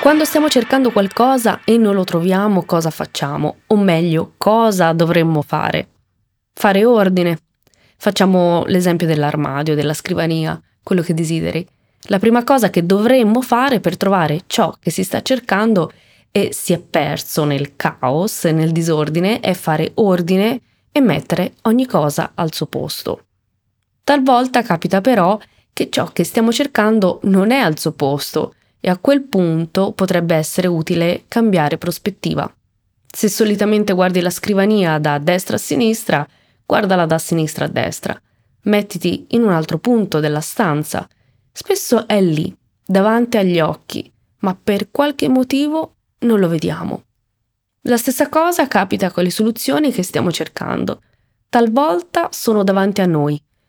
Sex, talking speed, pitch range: female, 145 wpm, 160-225 Hz